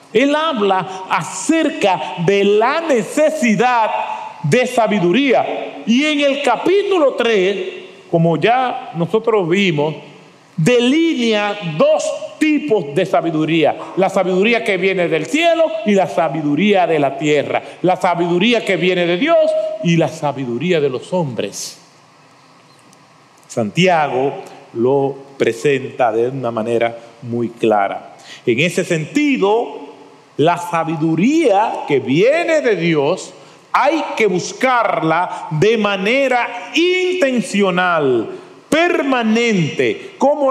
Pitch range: 180-295 Hz